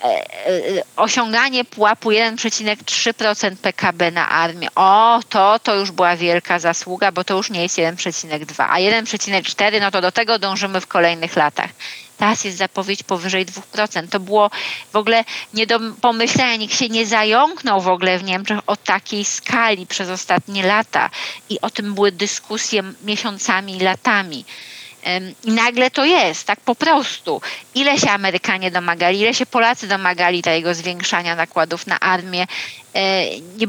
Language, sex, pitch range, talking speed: Polish, female, 185-230 Hz, 150 wpm